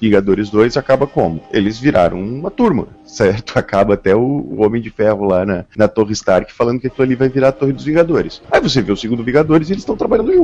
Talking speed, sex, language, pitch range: 235 wpm, male, Portuguese, 105-145 Hz